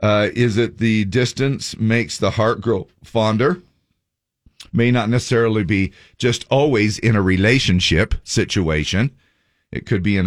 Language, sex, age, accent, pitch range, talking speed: English, male, 50-69, American, 90-120 Hz, 140 wpm